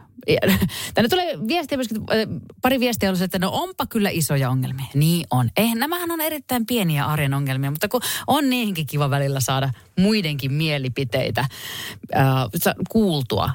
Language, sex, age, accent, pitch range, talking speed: Finnish, female, 30-49, native, 135-185 Hz, 135 wpm